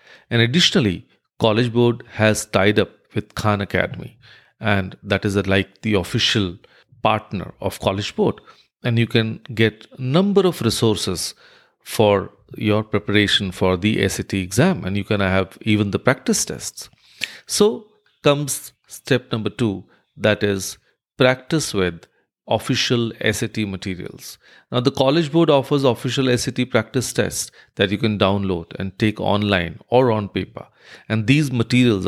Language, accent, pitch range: English, Indian, 100-125 Hz